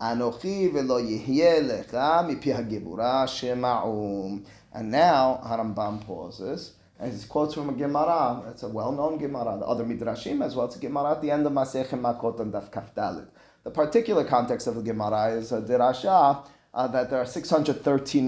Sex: male